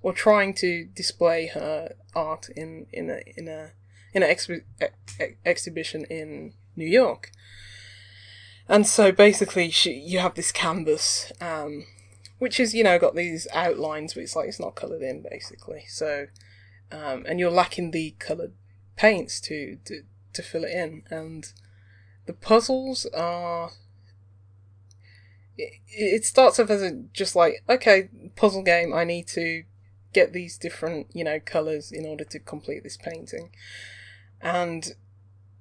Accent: British